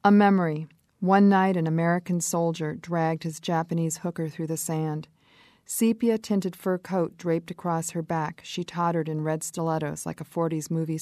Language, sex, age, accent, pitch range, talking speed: English, female, 50-69, American, 160-185 Hz, 165 wpm